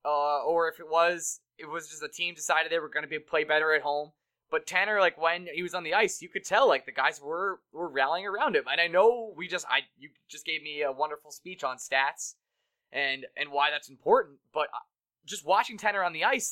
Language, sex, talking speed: English, male, 245 wpm